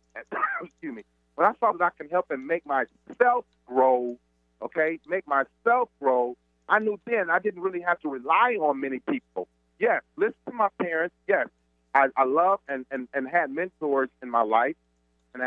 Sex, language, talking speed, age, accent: male, English, 190 wpm, 40-59, American